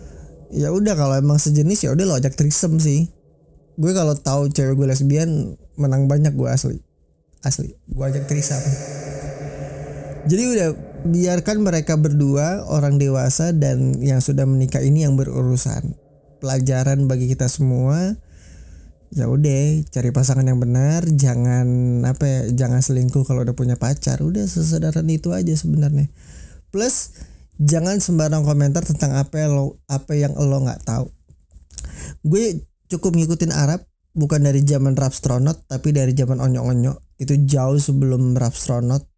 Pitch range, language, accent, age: 130-150 Hz, Indonesian, native, 20-39